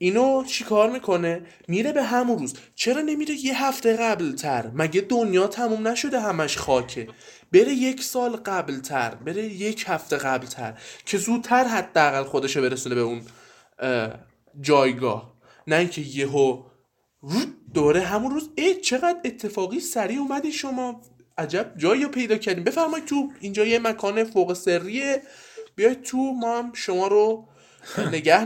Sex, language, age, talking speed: male, Persian, 20-39, 135 wpm